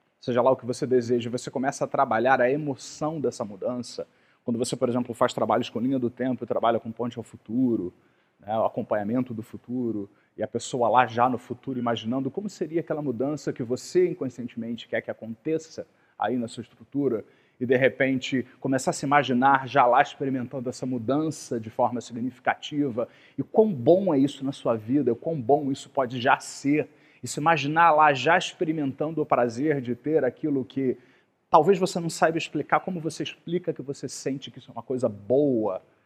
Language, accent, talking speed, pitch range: Portuguese, Brazilian, 190 wpm, 125-155 Hz